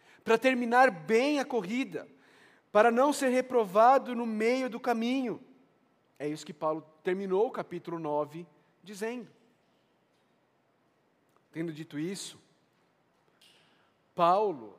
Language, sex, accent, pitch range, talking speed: Portuguese, male, Brazilian, 160-230 Hz, 105 wpm